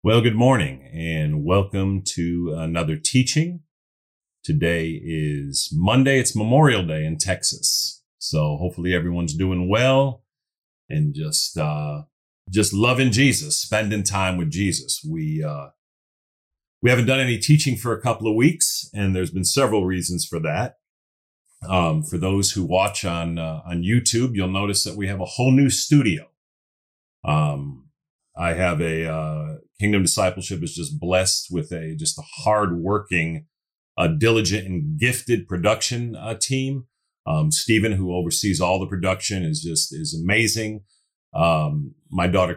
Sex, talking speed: male, 145 wpm